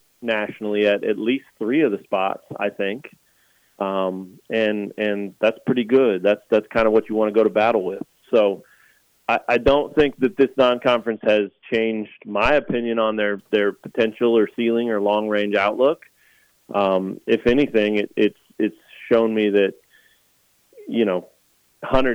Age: 30-49